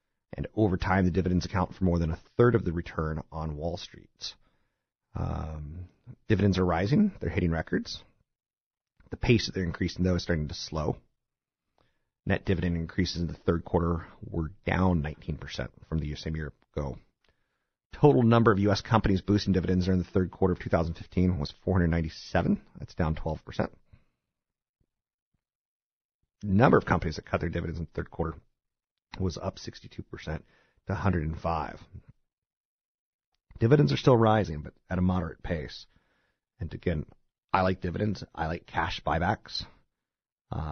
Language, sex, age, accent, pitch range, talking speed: English, male, 40-59, American, 80-100 Hz, 150 wpm